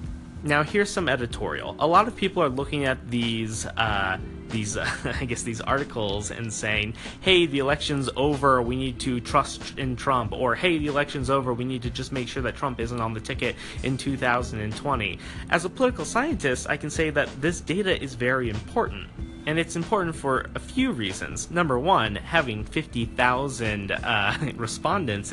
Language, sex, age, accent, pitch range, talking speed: English, male, 30-49, American, 110-140 Hz, 180 wpm